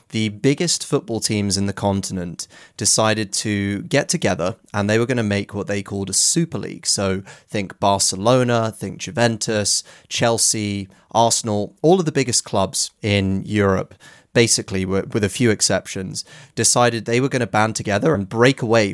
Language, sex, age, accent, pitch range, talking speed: English, male, 30-49, British, 100-135 Hz, 165 wpm